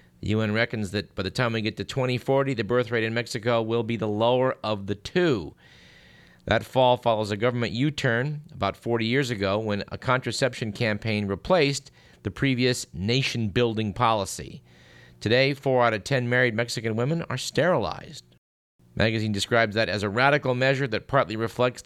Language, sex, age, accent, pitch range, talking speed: English, male, 50-69, American, 105-130 Hz, 170 wpm